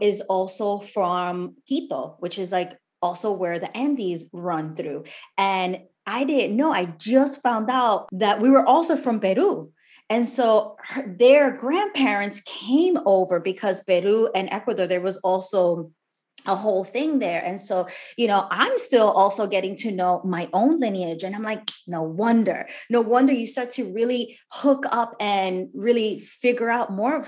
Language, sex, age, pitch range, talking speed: English, female, 20-39, 190-255 Hz, 165 wpm